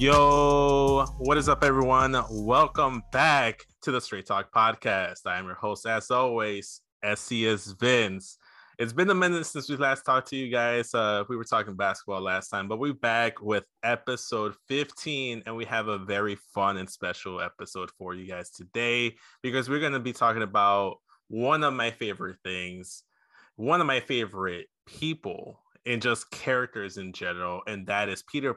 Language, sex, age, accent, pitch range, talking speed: English, male, 20-39, American, 105-135 Hz, 175 wpm